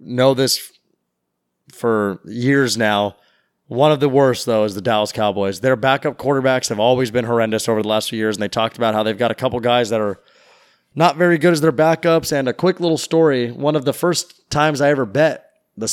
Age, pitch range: 30-49, 125-160 Hz